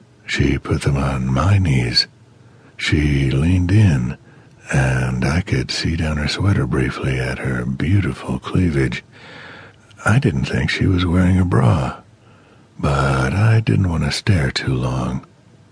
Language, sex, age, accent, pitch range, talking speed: English, male, 60-79, American, 70-105 Hz, 140 wpm